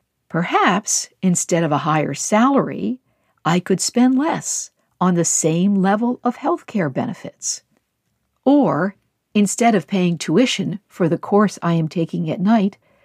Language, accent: English, American